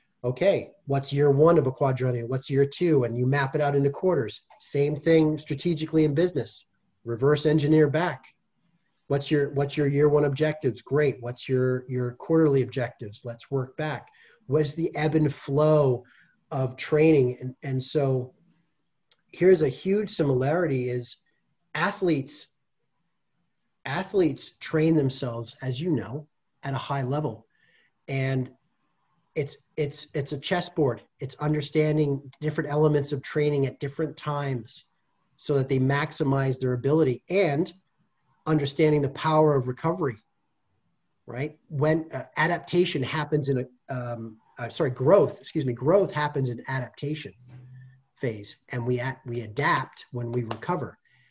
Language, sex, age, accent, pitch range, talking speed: English, male, 30-49, American, 130-155 Hz, 140 wpm